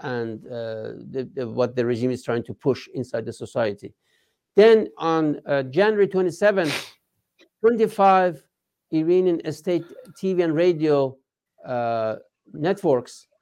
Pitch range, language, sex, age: 135-170 Hz, English, male, 60-79